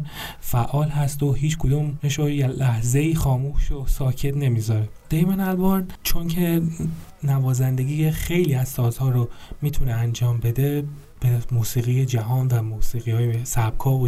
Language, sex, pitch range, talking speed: Persian, male, 120-140 Hz, 135 wpm